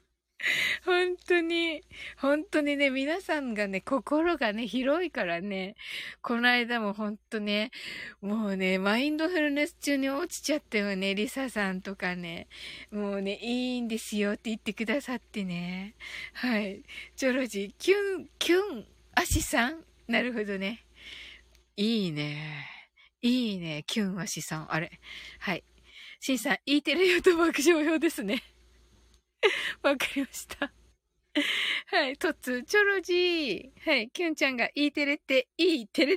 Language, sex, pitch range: Japanese, female, 210-320 Hz